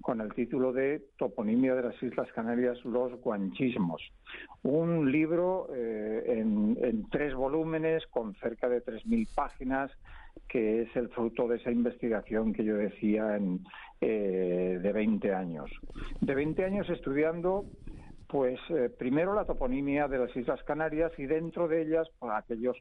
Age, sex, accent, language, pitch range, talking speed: 50-69, male, Spanish, Spanish, 120-165 Hz, 145 wpm